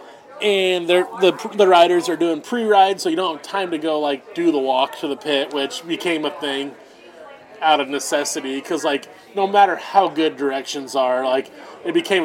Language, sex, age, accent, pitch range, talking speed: English, male, 20-39, American, 150-195 Hz, 195 wpm